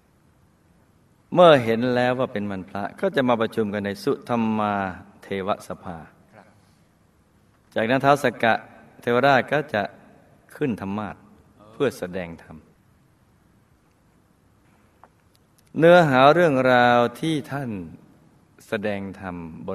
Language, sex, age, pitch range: Thai, male, 20-39, 95-120 Hz